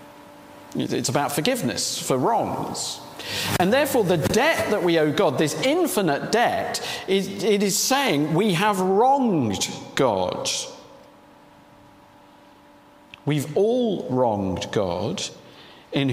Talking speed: 110 wpm